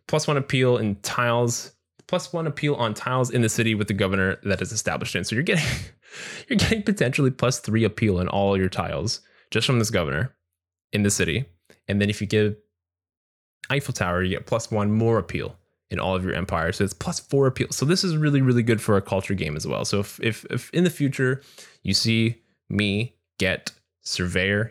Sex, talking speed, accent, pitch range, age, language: male, 210 wpm, American, 95-125 Hz, 10-29, English